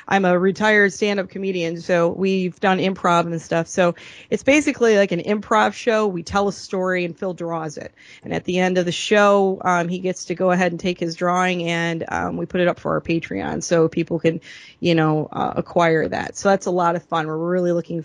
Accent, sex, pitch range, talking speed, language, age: American, female, 175-200 Hz, 230 wpm, English, 30-49